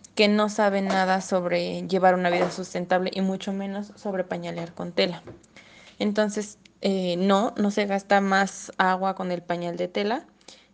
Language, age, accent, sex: Spanish, 20-39, Mexican, female